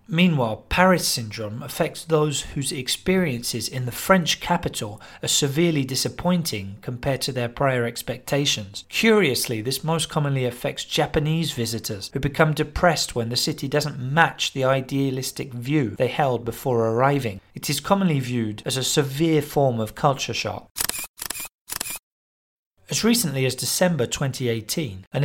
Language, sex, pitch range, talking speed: English, male, 120-155 Hz, 140 wpm